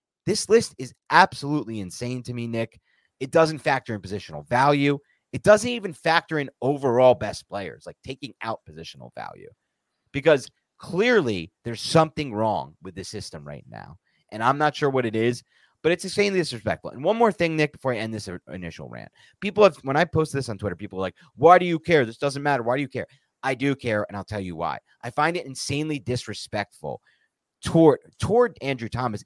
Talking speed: 200 wpm